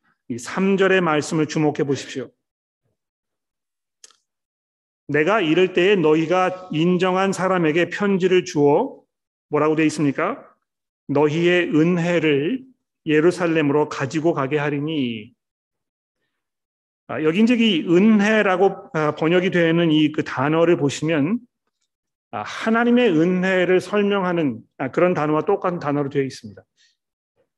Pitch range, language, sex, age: 160-205 Hz, Korean, male, 40-59